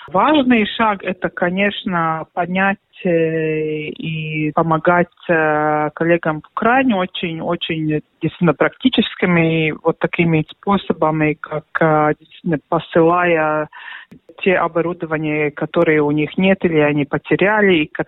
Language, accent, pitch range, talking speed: Russian, native, 155-185 Hz, 95 wpm